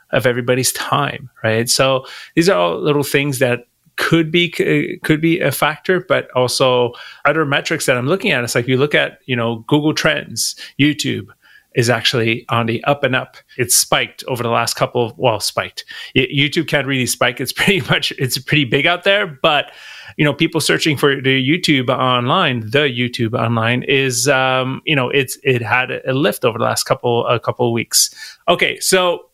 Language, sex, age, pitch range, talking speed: English, male, 30-49, 125-155 Hz, 195 wpm